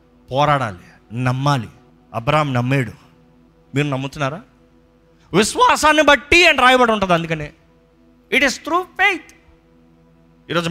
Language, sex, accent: Telugu, male, native